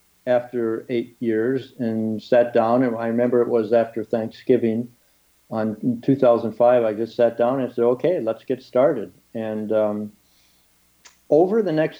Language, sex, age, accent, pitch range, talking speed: English, male, 60-79, American, 110-130 Hz, 160 wpm